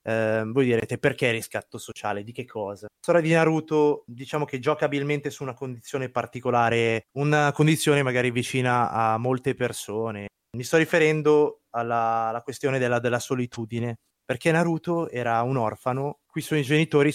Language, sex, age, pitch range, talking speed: Italian, male, 20-39, 115-140 Hz, 160 wpm